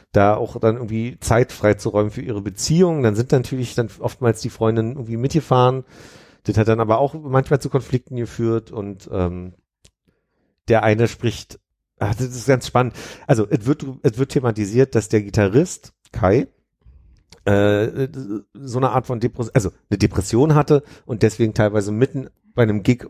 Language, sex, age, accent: German, male, 40-59, German